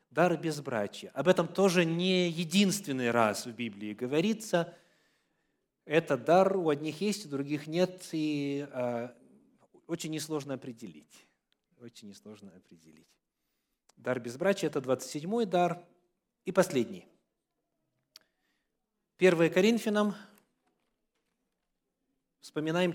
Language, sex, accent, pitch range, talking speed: Russian, male, native, 140-195 Hz, 95 wpm